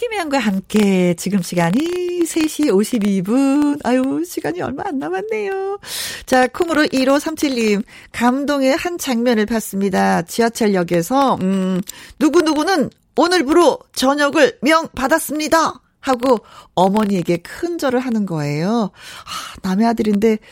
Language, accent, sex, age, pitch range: Korean, native, female, 40-59, 175-270 Hz